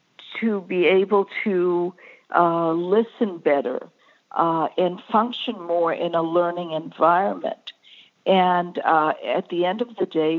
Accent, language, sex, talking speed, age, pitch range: American, English, female, 135 wpm, 60-79, 170-220 Hz